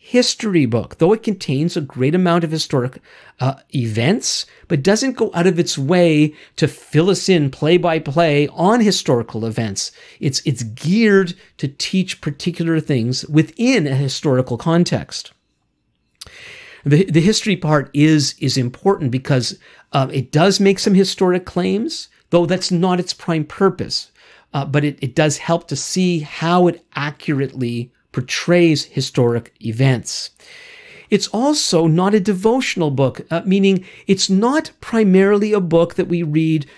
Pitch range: 140-185 Hz